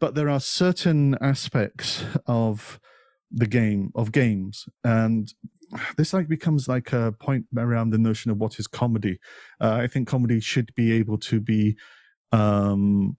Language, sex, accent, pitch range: English, male, British, 105-125 Hz